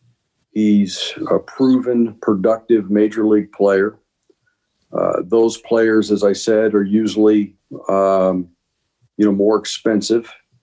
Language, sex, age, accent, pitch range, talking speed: English, male, 50-69, American, 95-110 Hz, 115 wpm